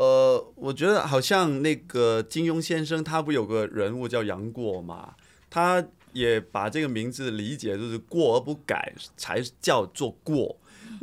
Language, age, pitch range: Chinese, 20-39, 110-160 Hz